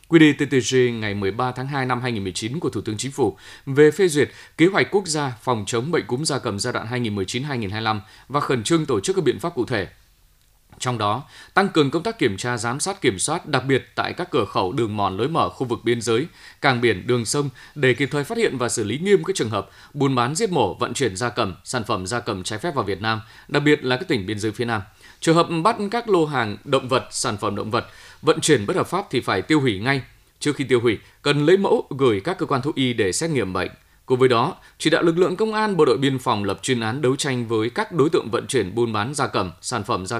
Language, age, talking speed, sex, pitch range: Vietnamese, 20-39, 265 wpm, male, 110-150 Hz